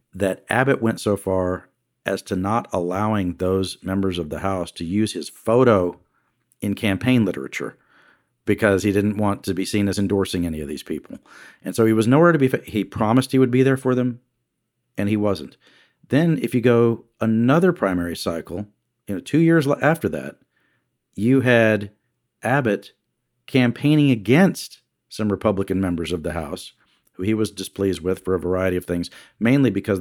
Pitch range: 95-130 Hz